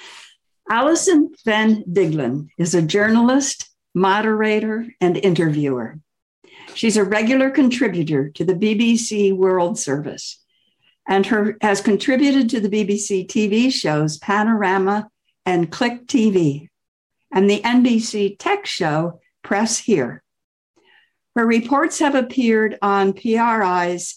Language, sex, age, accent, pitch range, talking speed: English, female, 60-79, American, 180-230 Hz, 110 wpm